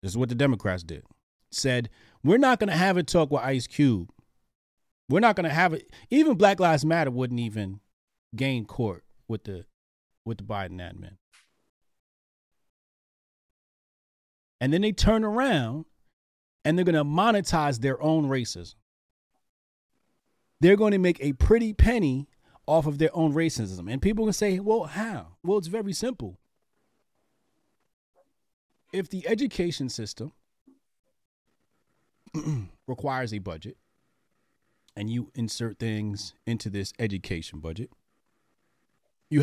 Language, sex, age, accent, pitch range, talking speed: English, male, 30-49, American, 105-175 Hz, 135 wpm